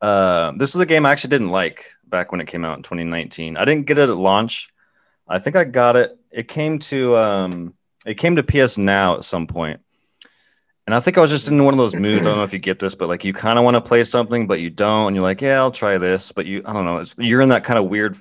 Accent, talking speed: American, 295 wpm